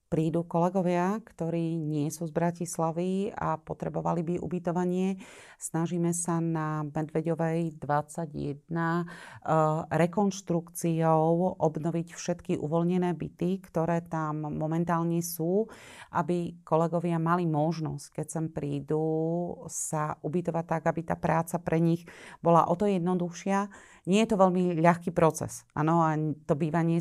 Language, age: Slovak, 40-59